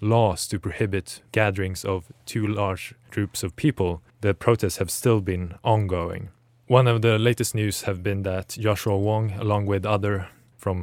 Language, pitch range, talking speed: English, 95-115 Hz, 165 wpm